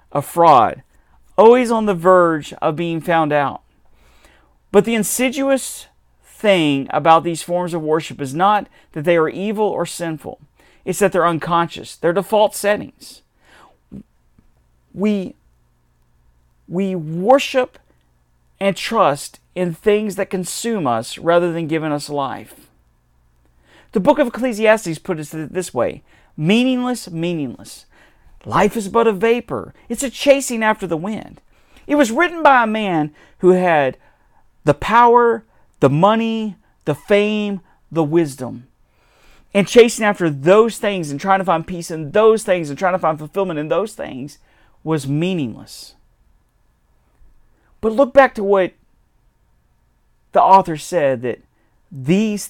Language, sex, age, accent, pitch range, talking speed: English, male, 40-59, American, 150-210 Hz, 135 wpm